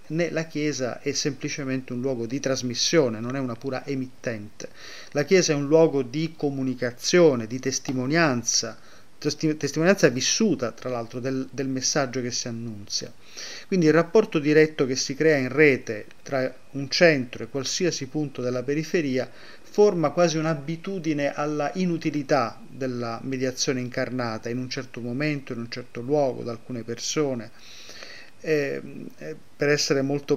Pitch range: 125-150 Hz